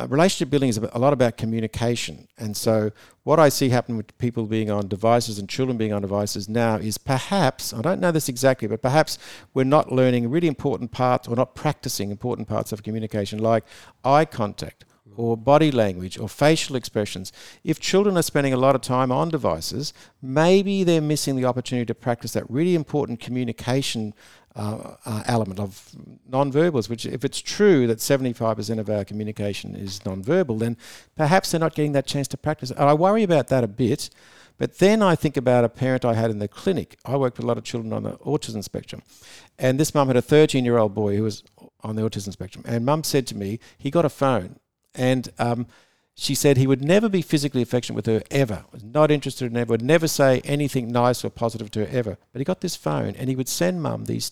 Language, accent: English, Australian